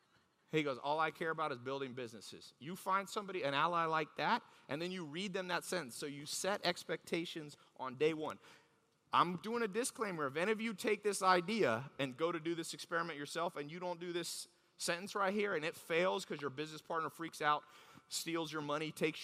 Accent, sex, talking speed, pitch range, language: American, male, 215 wpm, 155-210 Hz, English